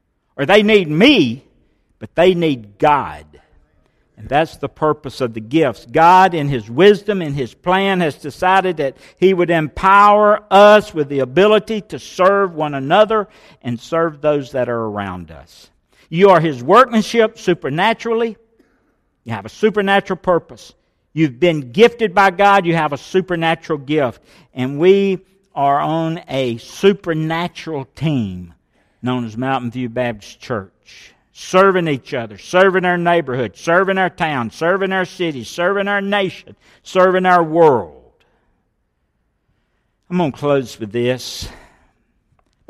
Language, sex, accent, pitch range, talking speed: English, male, American, 125-190 Hz, 140 wpm